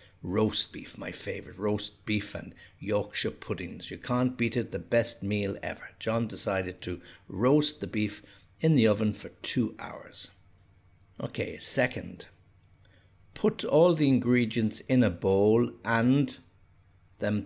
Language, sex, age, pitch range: English, male, 60-79, 95-110 Hz